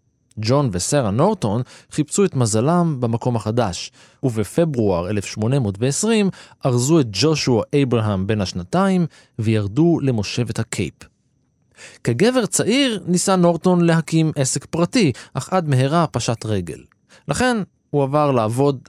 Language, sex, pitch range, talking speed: Hebrew, male, 110-150 Hz, 110 wpm